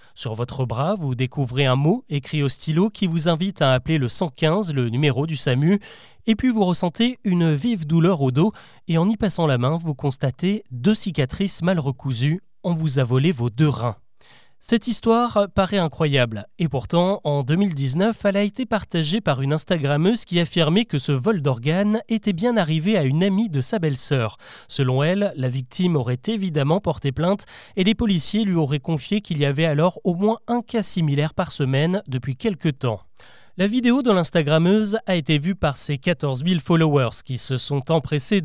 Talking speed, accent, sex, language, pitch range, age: 190 wpm, French, male, French, 140-195 Hz, 30-49